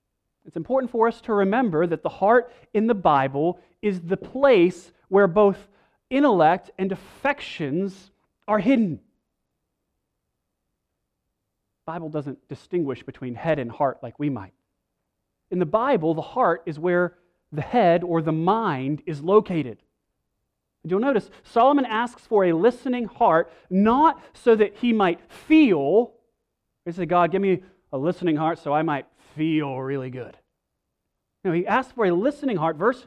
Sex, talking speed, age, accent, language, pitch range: male, 150 wpm, 30-49, American, English, 165-225 Hz